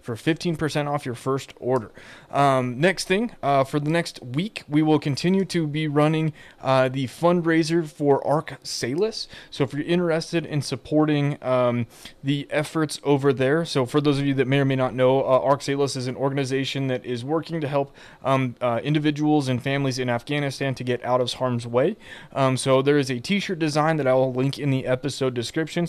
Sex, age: male, 20-39